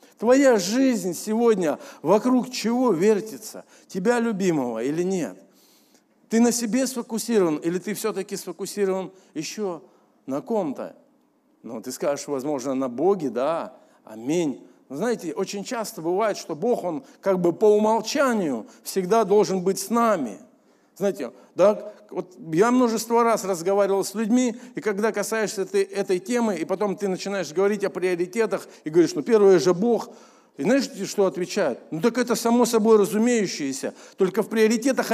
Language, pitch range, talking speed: Russian, 195-240 Hz, 145 wpm